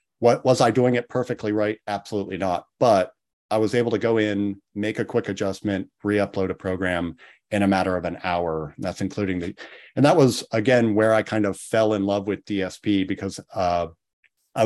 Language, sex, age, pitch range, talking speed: English, male, 40-59, 95-110 Hz, 195 wpm